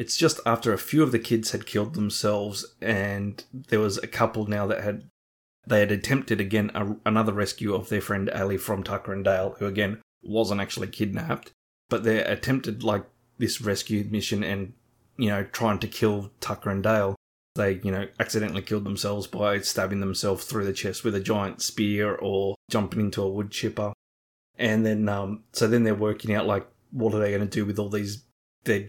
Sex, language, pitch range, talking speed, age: male, English, 105-120 Hz, 195 wpm, 20-39